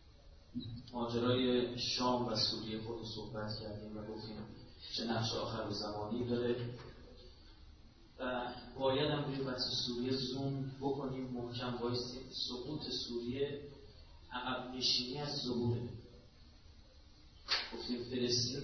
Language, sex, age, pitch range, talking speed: Persian, male, 30-49, 110-125 Hz, 95 wpm